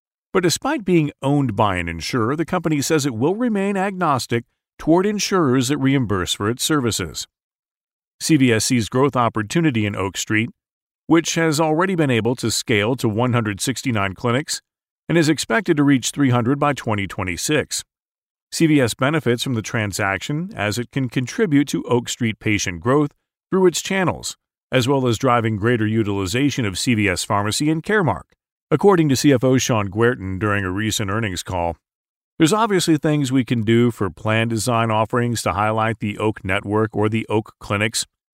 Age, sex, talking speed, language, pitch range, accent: 40-59, male, 160 wpm, English, 110-150 Hz, American